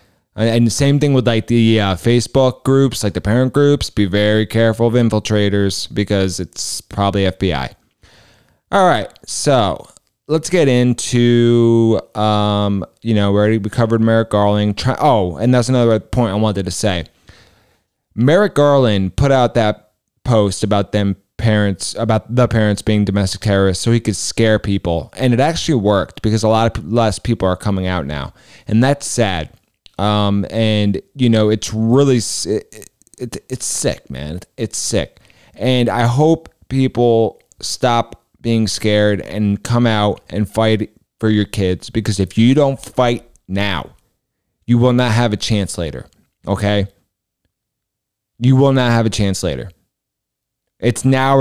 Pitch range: 100-125 Hz